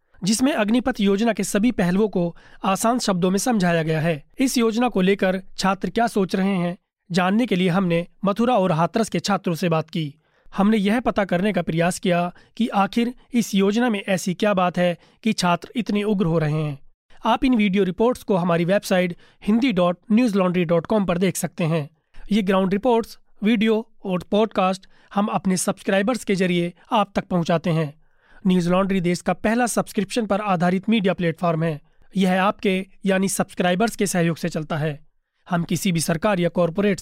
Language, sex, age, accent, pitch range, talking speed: Hindi, male, 30-49, native, 175-210 Hz, 180 wpm